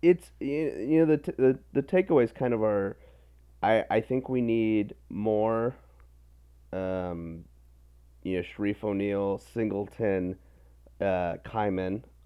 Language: English